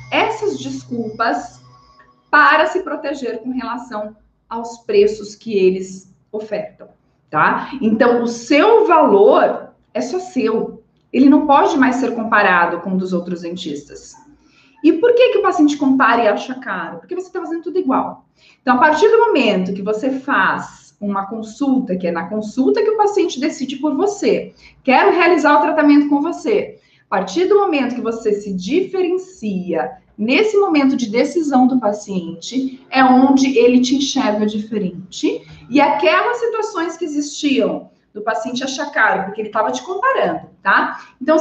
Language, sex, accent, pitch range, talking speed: Portuguese, female, Brazilian, 215-335 Hz, 160 wpm